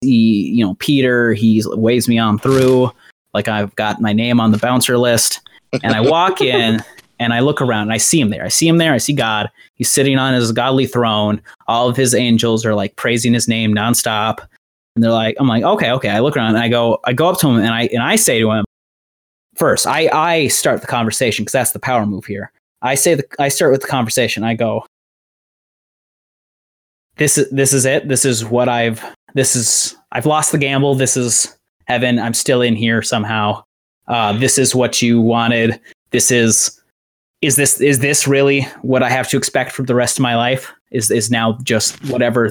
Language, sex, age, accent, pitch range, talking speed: English, male, 30-49, American, 110-135 Hz, 215 wpm